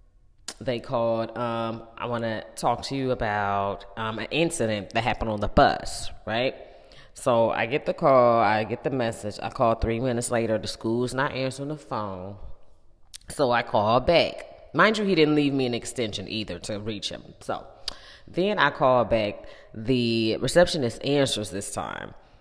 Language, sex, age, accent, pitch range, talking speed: English, female, 20-39, American, 110-145 Hz, 175 wpm